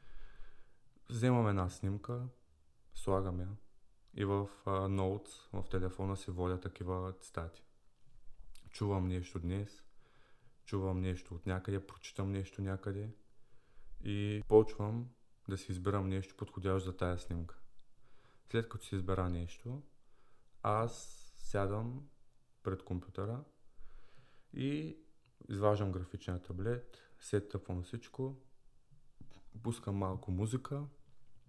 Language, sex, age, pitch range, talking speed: Bulgarian, male, 20-39, 95-115 Hz, 105 wpm